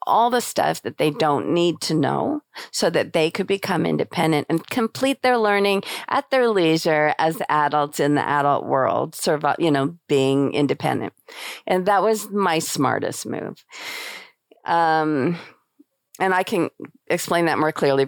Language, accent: English, American